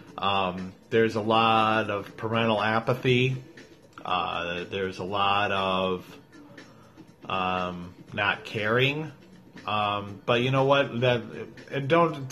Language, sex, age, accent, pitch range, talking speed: English, male, 30-49, American, 105-125 Hz, 100 wpm